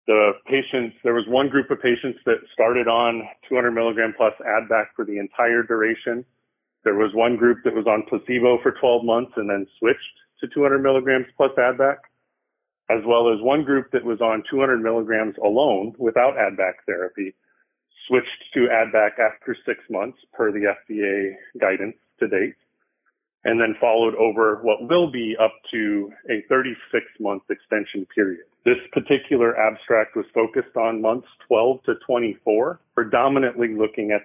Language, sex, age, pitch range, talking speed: English, male, 30-49, 110-135 Hz, 160 wpm